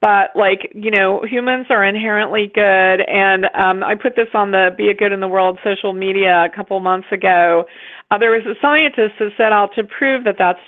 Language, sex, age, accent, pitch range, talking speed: English, female, 40-59, American, 190-220 Hz, 220 wpm